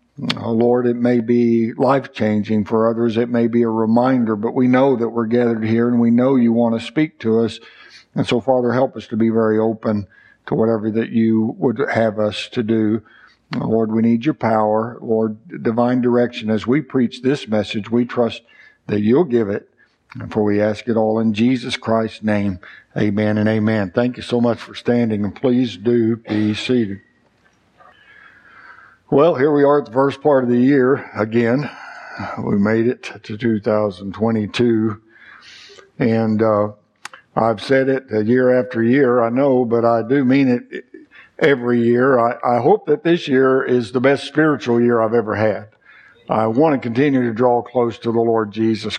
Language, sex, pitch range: English, male, 110-125 Hz